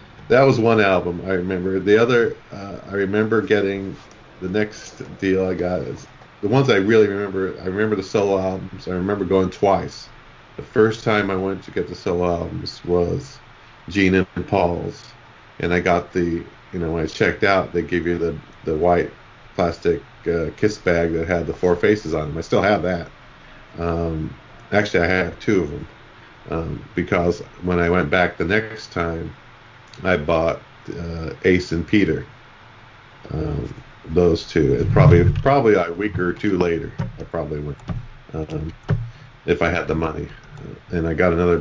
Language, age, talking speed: English, 40-59, 180 wpm